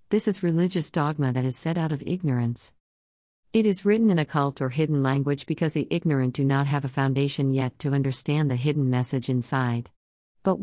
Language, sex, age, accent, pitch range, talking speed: English, female, 50-69, American, 135-170 Hz, 190 wpm